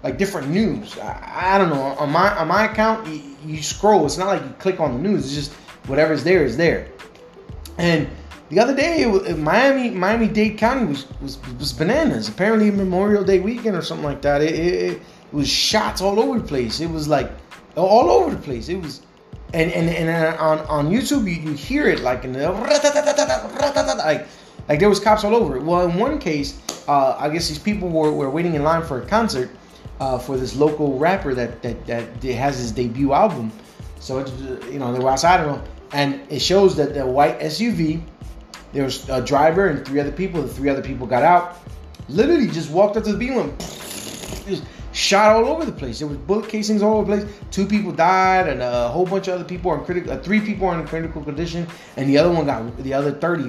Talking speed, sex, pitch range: 225 wpm, male, 140-205 Hz